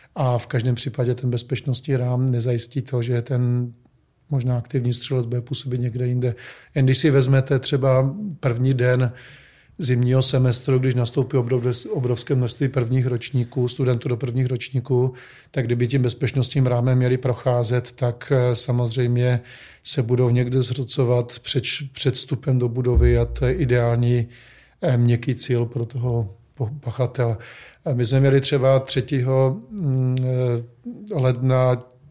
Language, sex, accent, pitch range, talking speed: Czech, male, native, 125-130 Hz, 130 wpm